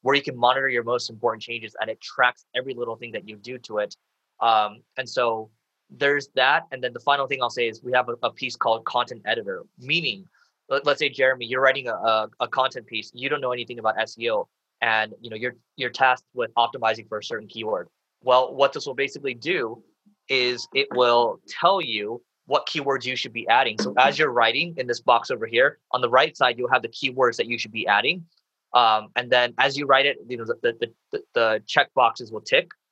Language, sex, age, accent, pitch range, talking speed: English, male, 20-39, American, 115-140 Hz, 225 wpm